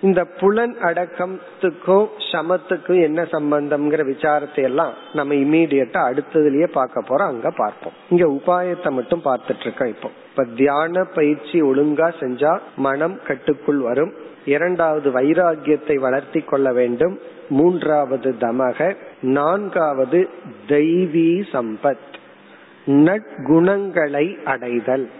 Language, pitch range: Tamil, 140-175 Hz